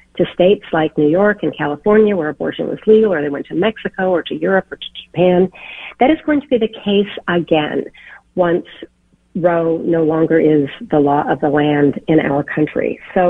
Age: 50-69